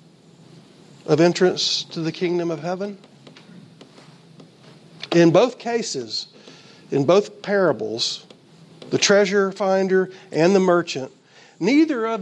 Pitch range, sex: 150-185 Hz, male